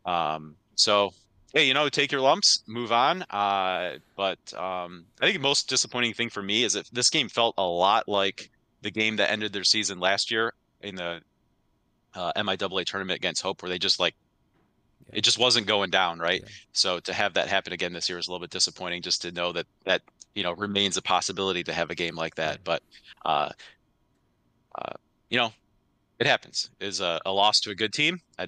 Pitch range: 90-110 Hz